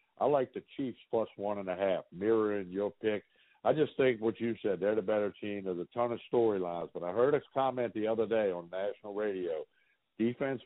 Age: 60-79